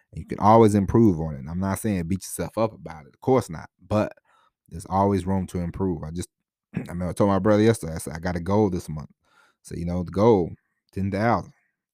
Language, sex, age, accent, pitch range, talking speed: English, male, 30-49, American, 85-105 Hz, 230 wpm